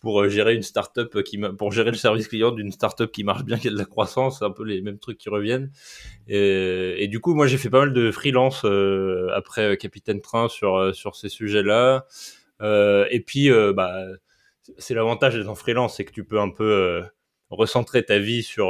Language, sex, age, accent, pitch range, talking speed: French, male, 20-39, French, 100-120 Hz, 225 wpm